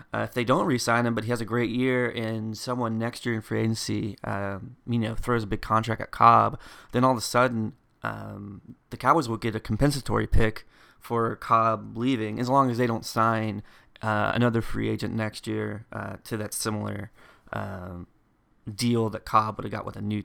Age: 20-39